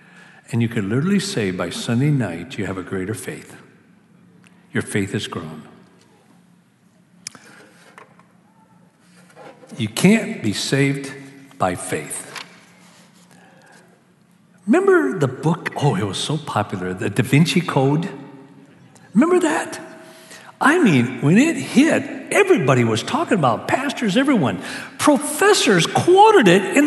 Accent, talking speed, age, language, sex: American, 115 wpm, 60-79, English, male